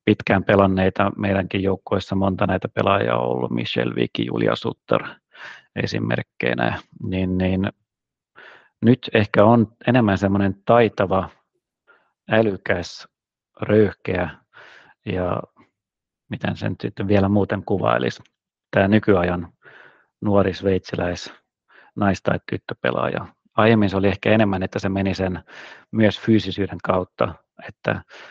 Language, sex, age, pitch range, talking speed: Finnish, male, 40-59, 95-105 Hz, 110 wpm